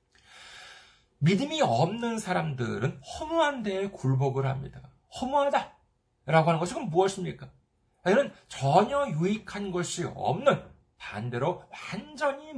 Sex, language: male, Korean